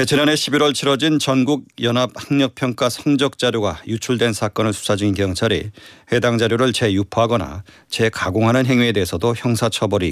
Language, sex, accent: Korean, male, native